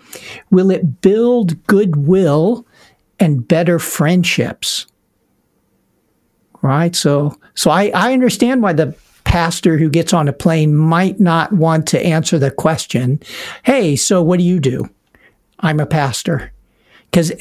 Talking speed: 130 wpm